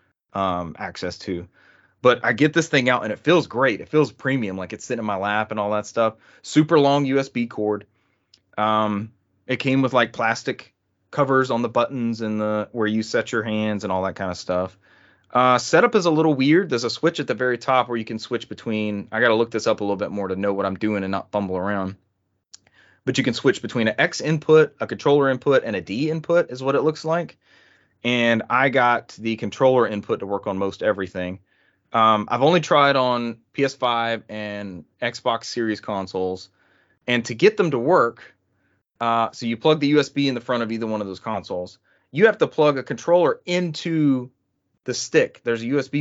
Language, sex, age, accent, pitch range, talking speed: English, male, 30-49, American, 100-130 Hz, 215 wpm